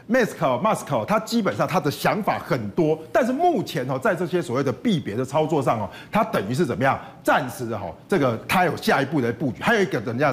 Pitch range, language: 140-210 Hz, Chinese